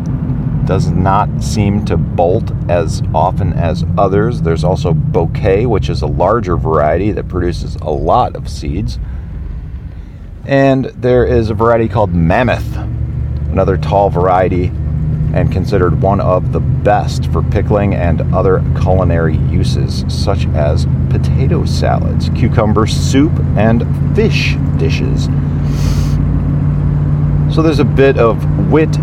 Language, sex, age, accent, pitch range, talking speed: English, male, 40-59, American, 85-115 Hz, 125 wpm